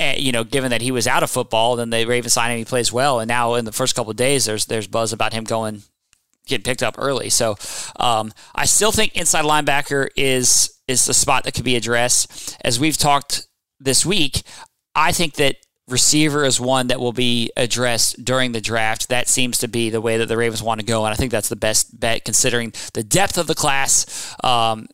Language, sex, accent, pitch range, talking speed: English, male, American, 115-145 Hz, 225 wpm